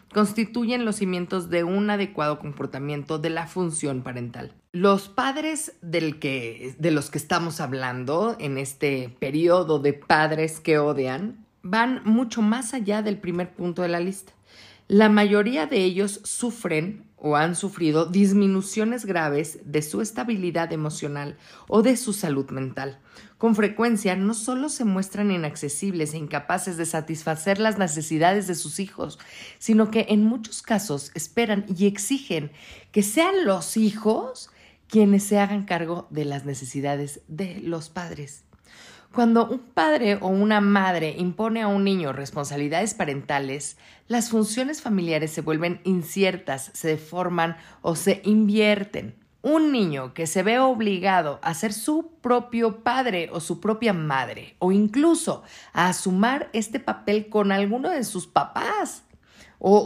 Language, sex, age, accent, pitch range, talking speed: Spanish, female, 40-59, Mexican, 155-220 Hz, 140 wpm